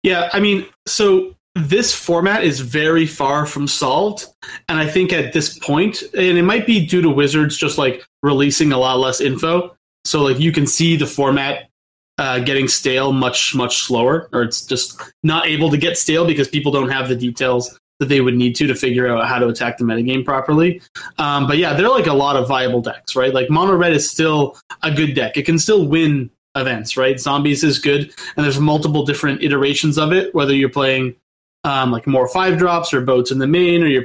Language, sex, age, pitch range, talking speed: English, male, 20-39, 130-155 Hz, 215 wpm